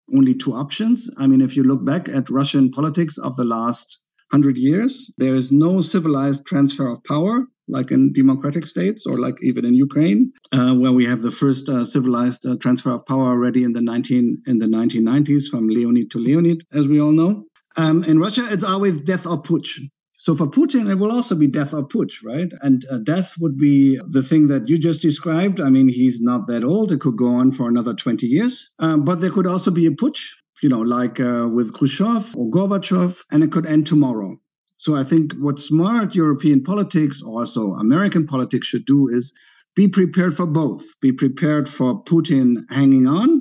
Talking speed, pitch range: 205 wpm, 130-180 Hz